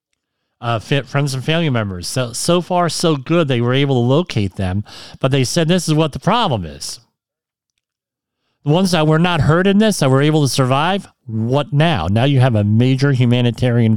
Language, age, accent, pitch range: English, 40-59, American, 110-145 Hz